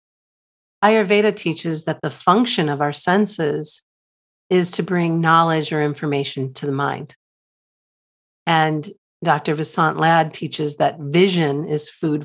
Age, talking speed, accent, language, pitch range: 50-69, 125 wpm, American, English, 150-190 Hz